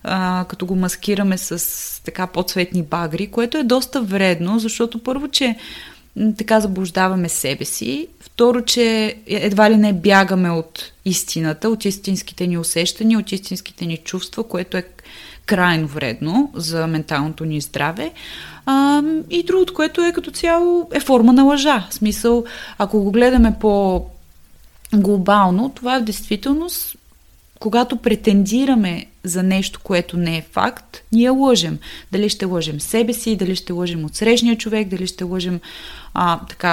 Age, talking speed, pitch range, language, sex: 30-49, 140 wpm, 185-235 Hz, Bulgarian, female